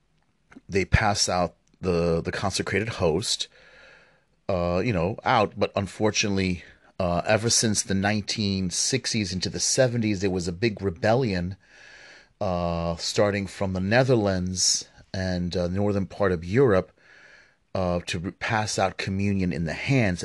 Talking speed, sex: 135 wpm, male